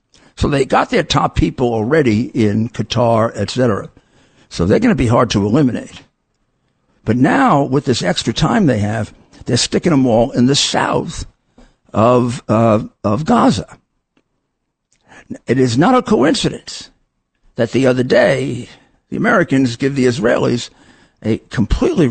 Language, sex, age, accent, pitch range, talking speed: English, male, 60-79, American, 110-130 Hz, 145 wpm